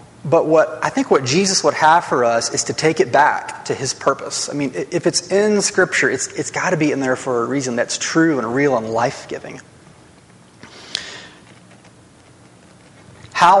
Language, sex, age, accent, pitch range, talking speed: English, male, 30-49, American, 120-150 Hz, 185 wpm